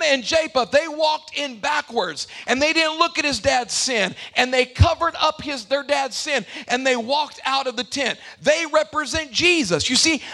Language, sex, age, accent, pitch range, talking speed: English, male, 40-59, American, 265-315 Hz, 195 wpm